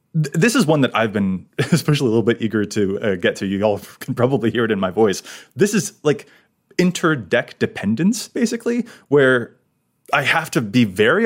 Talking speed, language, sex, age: 190 wpm, English, male, 30-49